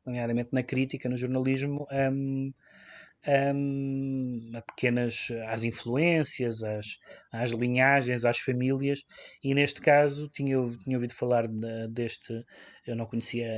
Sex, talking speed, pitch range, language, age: male, 130 wpm, 120-140 Hz, Portuguese, 20-39